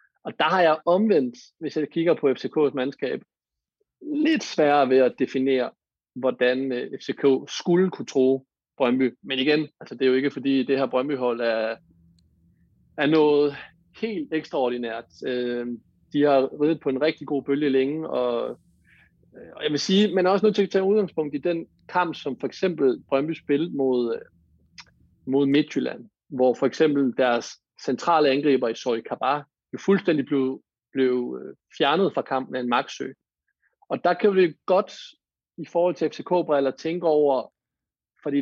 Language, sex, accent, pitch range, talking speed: Danish, male, native, 130-160 Hz, 155 wpm